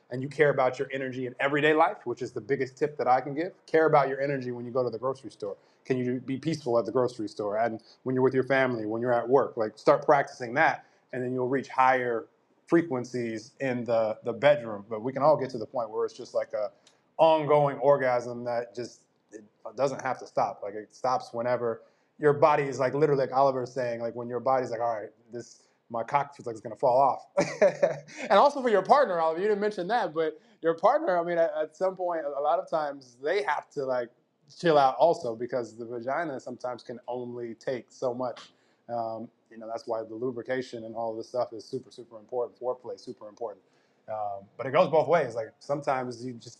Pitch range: 120-145 Hz